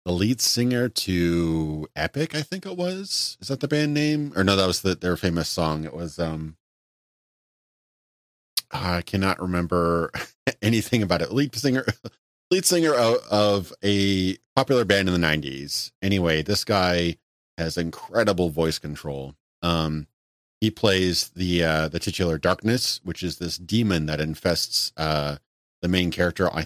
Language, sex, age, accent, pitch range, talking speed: English, male, 30-49, American, 80-95 Hz, 155 wpm